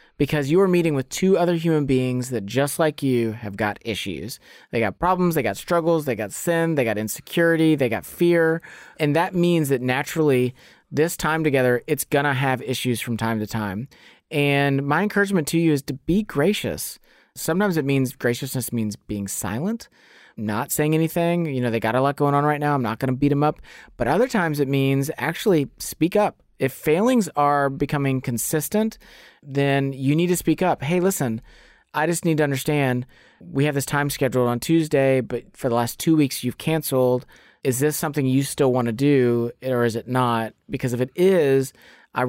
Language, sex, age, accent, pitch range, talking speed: English, male, 30-49, American, 120-160 Hz, 200 wpm